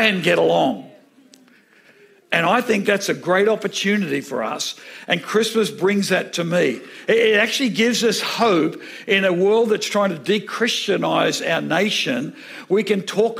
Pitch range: 185-220 Hz